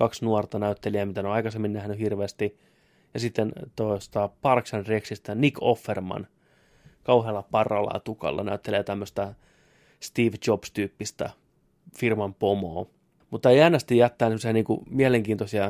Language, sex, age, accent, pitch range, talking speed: Finnish, male, 20-39, native, 100-115 Hz, 120 wpm